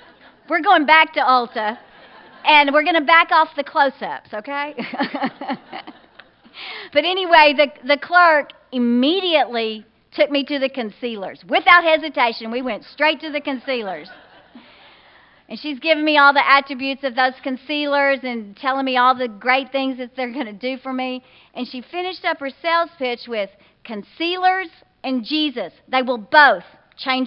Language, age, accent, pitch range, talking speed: English, 40-59, American, 250-320 Hz, 160 wpm